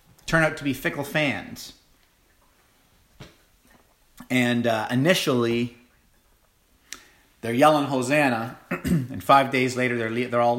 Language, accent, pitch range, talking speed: English, American, 110-130 Hz, 115 wpm